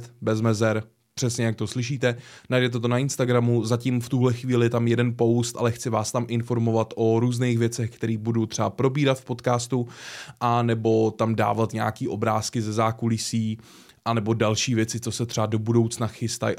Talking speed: 180 wpm